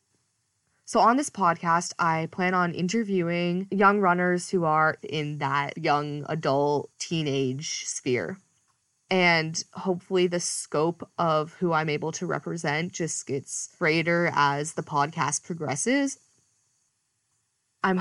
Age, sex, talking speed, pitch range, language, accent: 20-39, female, 120 wpm, 160-230 Hz, English, American